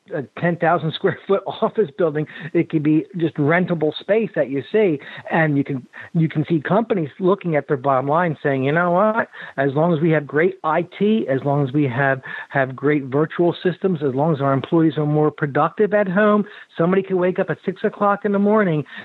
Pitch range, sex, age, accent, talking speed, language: 150-185 Hz, male, 50-69, American, 210 wpm, English